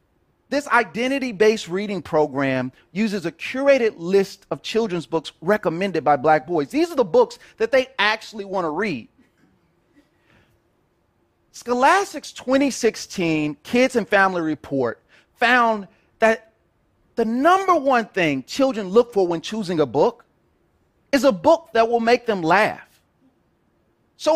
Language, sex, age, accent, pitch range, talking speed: English, male, 40-59, American, 180-255 Hz, 130 wpm